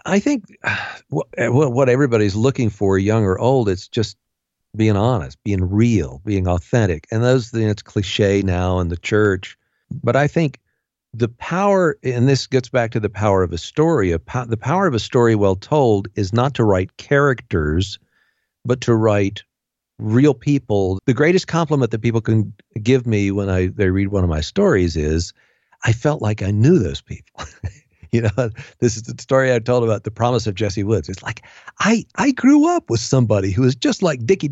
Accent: American